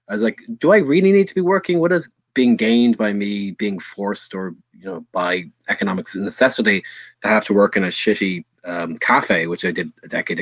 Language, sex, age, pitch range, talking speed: English, male, 20-39, 100-125 Hz, 220 wpm